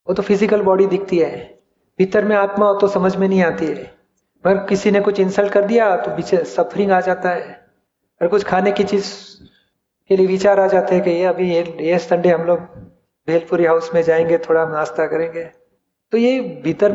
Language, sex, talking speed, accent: Hindi, male, 200 wpm, native